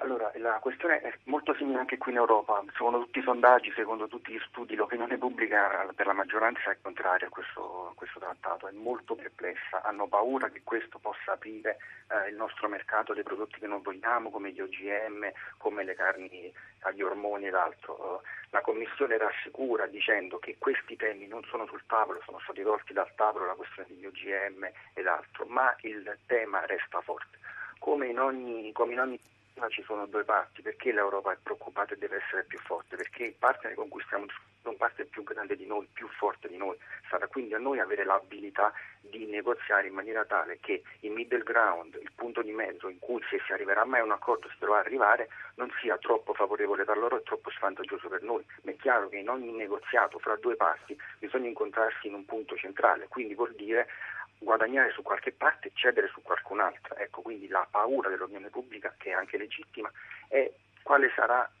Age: 40-59